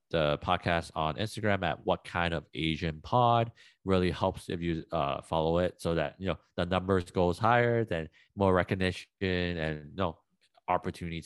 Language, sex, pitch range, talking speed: English, male, 80-95 Hz, 175 wpm